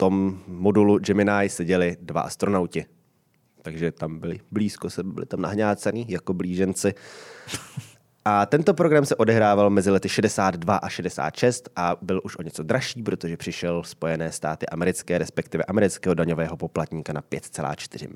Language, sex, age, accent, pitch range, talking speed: Czech, male, 20-39, native, 90-105 Hz, 145 wpm